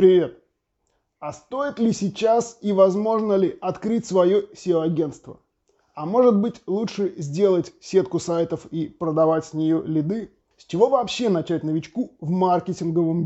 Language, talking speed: Russian, 135 wpm